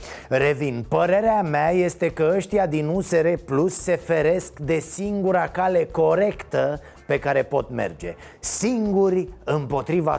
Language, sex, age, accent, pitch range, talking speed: Romanian, male, 30-49, native, 155-195 Hz, 125 wpm